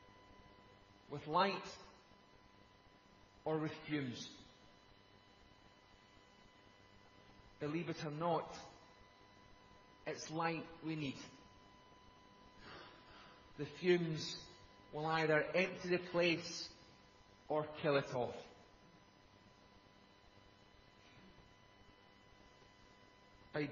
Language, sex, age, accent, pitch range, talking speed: English, male, 30-49, British, 100-160 Hz, 65 wpm